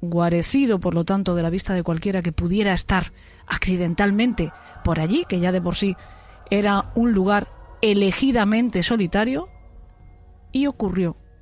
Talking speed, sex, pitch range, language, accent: 140 wpm, female, 175-220 Hz, Spanish, Spanish